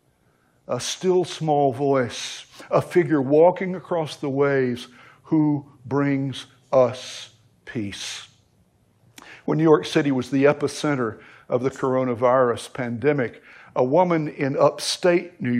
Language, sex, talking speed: English, male, 115 wpm